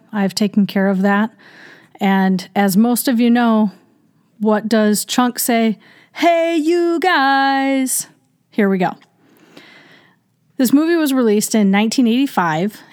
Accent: American